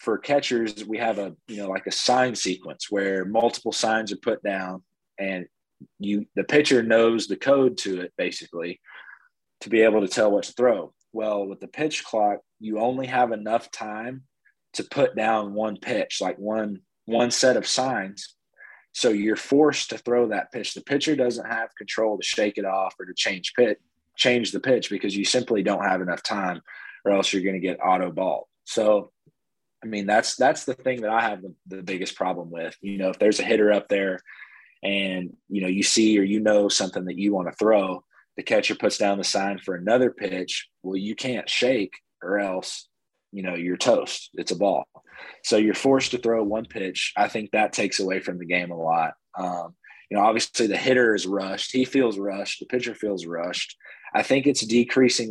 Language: English